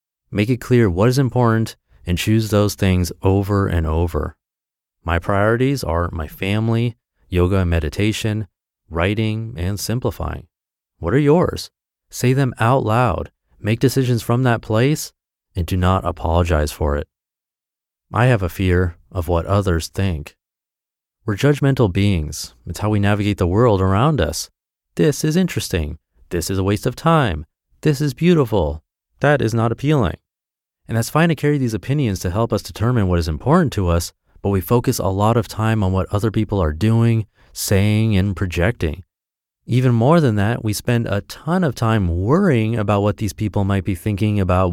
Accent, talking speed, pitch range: American, 170 wpm, 90-115 Hz